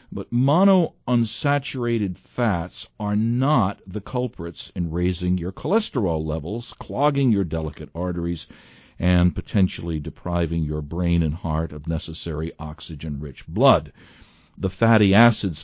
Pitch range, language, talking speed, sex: 80-115 Hz, English, 115 wpm, male